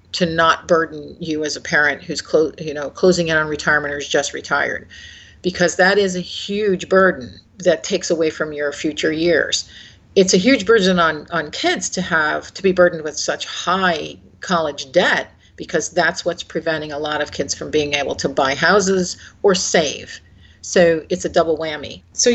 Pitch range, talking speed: 150-190 Hz, 190 wpm